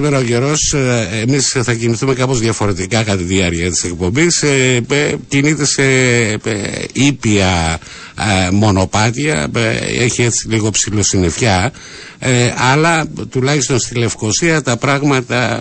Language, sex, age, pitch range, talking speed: Greek, male, 60-79, 100-130 Hz, 125 wpm